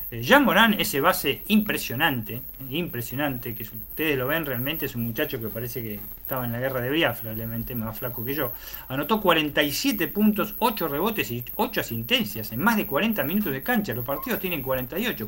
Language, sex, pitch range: Spanish, male, 120-170 Hz